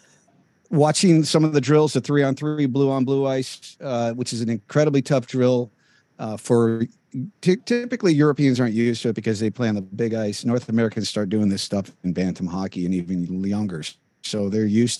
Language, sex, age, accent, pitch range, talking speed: English, male, 50-69, American, 110-135 Hz, 200 wpm